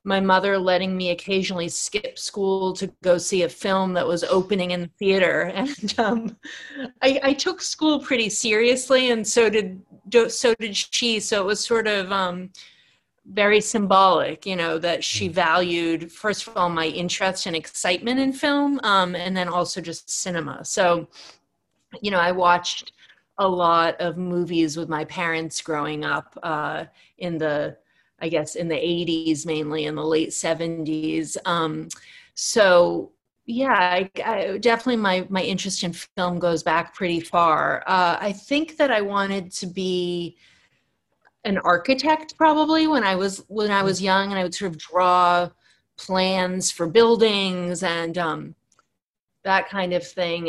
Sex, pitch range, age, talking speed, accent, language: female, 170-210 Hz, 30-49, 160 wpm, American, English